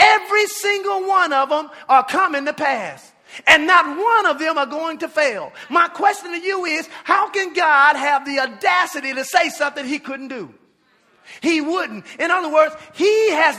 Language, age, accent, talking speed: English, 40-59, American, 185 wpm